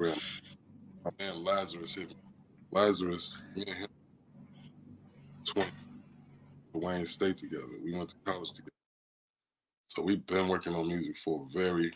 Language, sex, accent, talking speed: English, male, American, 130 wpm